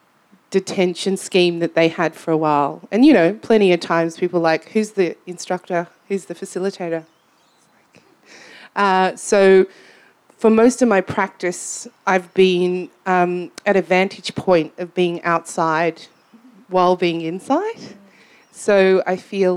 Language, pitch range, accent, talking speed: English, 170-195 Hz, Australian, 140 wpm